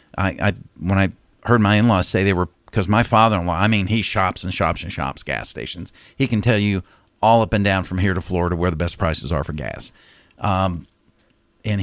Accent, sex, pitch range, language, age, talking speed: American, male, 90-110 Hz, English, 50-69, 225 wpm